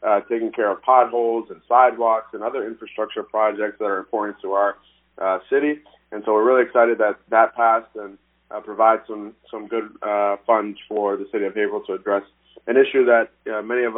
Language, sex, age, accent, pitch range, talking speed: English, male, 30-49, American, 105-125 Hz, 200 wpm